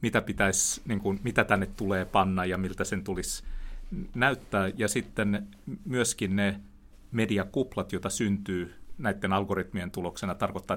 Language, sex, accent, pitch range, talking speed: Finnish, male, native, 95-115 Hz, 135 wpm